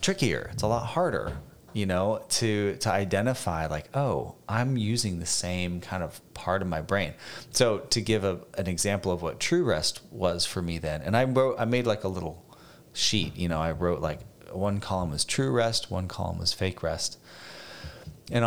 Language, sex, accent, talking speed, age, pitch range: English, male, American, 200 wpm, 30-49, 80-110 Hz